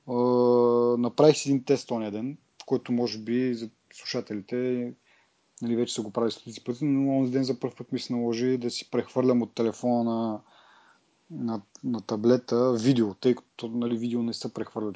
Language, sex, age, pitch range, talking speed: Bulgarian, male, 30-49, 115-130 Hz, 180 wpm